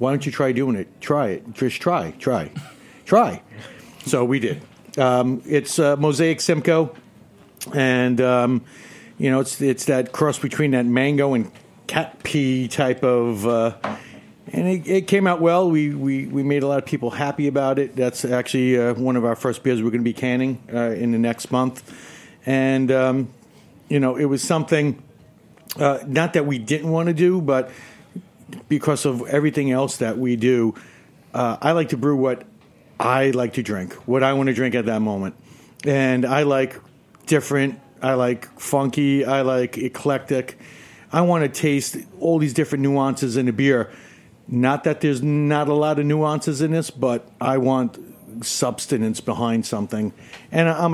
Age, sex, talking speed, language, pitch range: 50-69, male, 180 wpm, English, 125-145 Hz